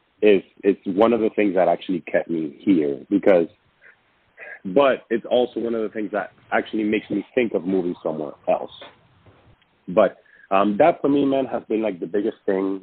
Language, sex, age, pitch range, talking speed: English, male, 30-49, 95-120 Hz, 185 wpm